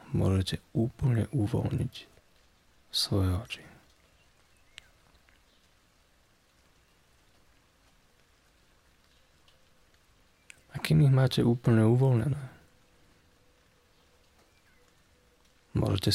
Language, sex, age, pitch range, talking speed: Slovak, male, 30-49, 90-130 Hz, 45 wpm